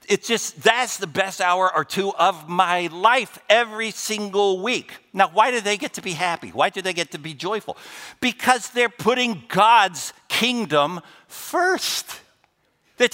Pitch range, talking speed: 145-200 Hz, 165 wpm